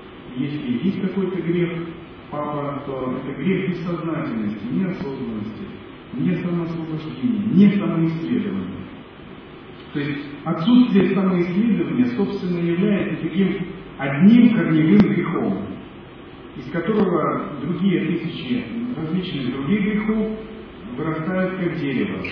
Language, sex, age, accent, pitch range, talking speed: Russian, male, 40-59, native, 140-195 Hz, 90 wpm